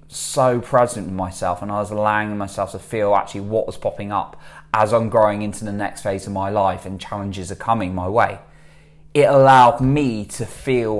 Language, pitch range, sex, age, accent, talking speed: English, 95-120 Hz, male, 20-39, British, 200 wpm